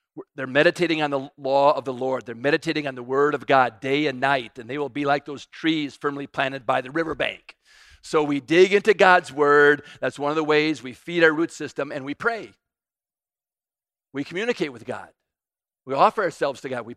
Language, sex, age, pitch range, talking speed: English, male, 50-69, 135-180 Hz, 210 wpm